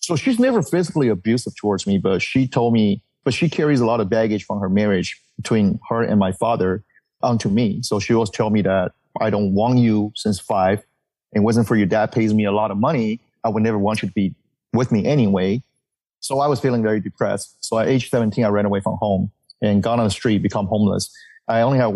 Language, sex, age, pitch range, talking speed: English, male, 30-49, 105-135 Hz, 235 wpm